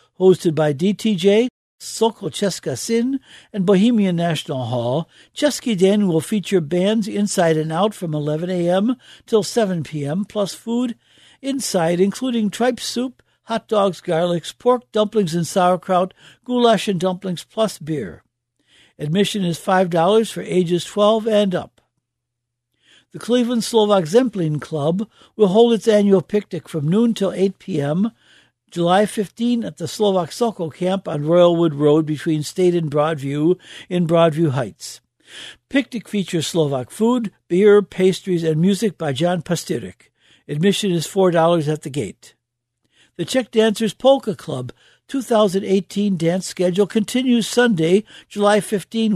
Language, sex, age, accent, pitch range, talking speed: English, male, 60-79, American, 165-215 Hz, 135 wpm